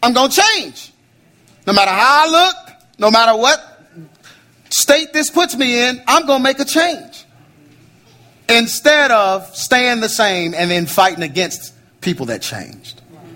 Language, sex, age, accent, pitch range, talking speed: English, male, 40-59, American, 130-195 Hz, 155 wpm